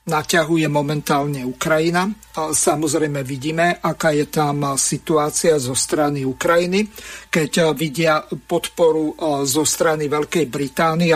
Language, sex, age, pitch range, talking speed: Slovak, male, 50-69, 150-170 Hz, 100 wpm